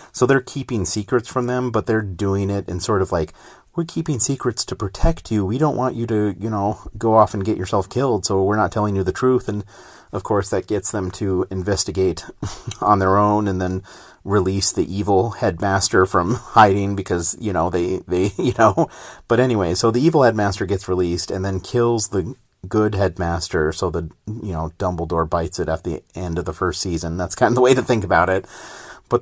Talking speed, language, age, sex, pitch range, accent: 215 wpm, English, 30-49, male, 95-125 Hz, American